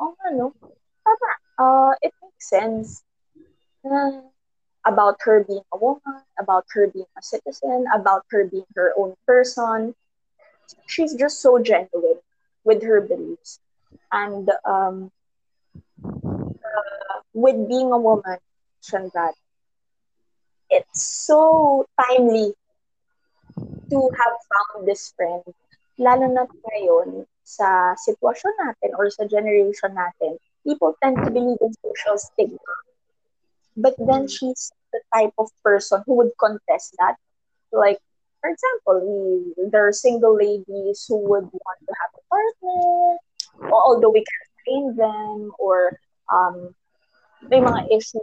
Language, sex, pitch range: English, female, 205-315 Hz